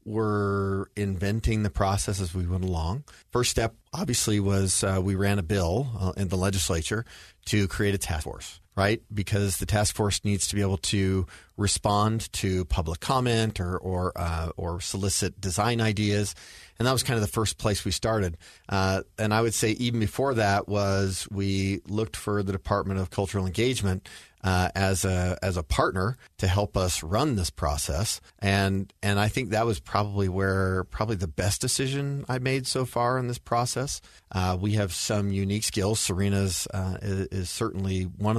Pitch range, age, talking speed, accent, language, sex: 95-110 Hz, 40-59, 185 wpm, American, English, male